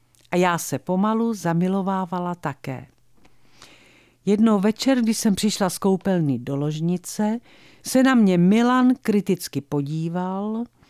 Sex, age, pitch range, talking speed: female, 50-69, 165-225 Hz, 115 wpm